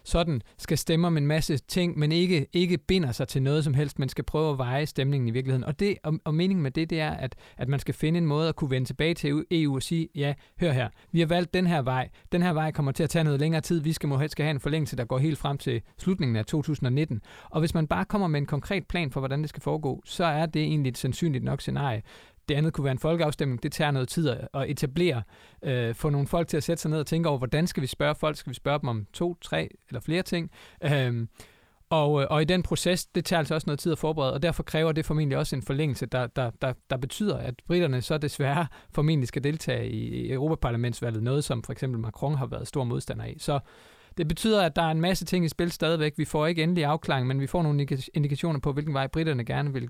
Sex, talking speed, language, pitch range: male, 260 wpm, Danish, 135-165 Hz